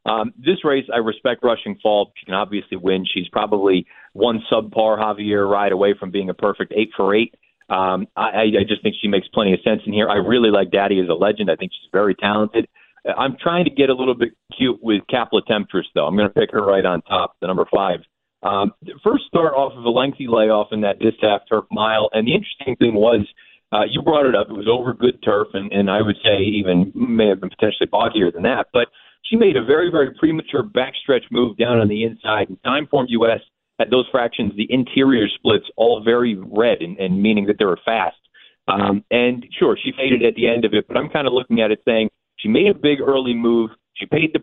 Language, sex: English, male